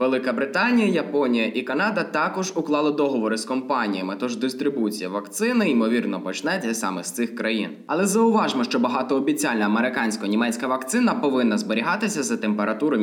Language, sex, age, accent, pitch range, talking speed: Ukrainian, male, 20-39, native, 105-145 Hz, 135 wpm